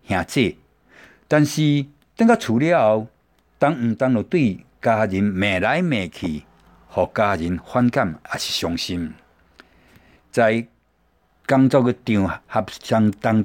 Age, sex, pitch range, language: 60-79, male, 95-130 Hz, Chinese